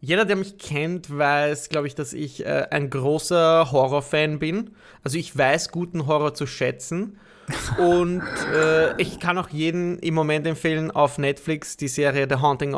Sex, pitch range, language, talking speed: male, 145-175 Hz, German, 170 wpm